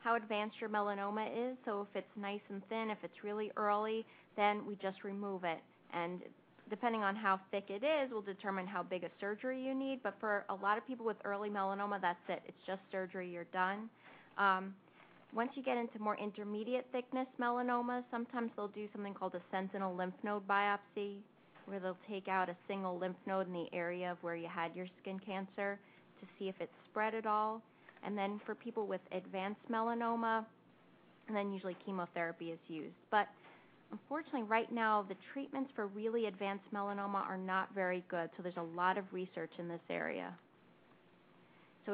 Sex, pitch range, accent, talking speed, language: female, 185-215 Hz, American, 190 wpm, English